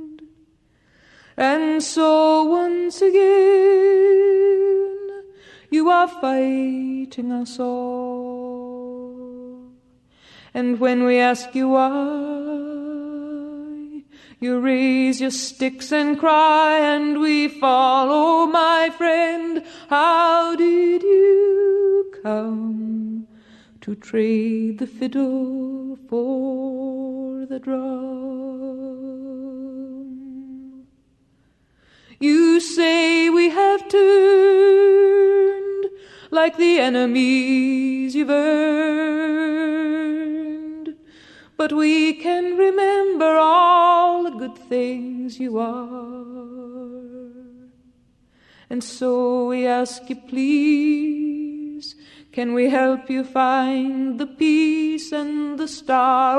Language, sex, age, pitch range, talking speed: Hebrew, female, 20-39, 260-330 Hz, 80 wpm